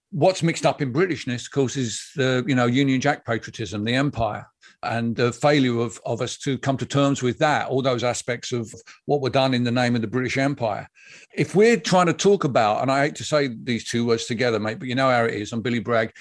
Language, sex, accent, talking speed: English, male, British, 250 wpm